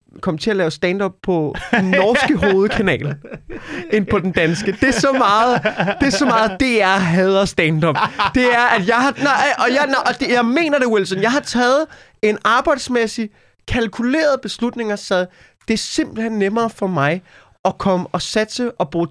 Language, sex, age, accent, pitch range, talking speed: Danish, male, 20-39, native, 155-225 Hz, 190 wpm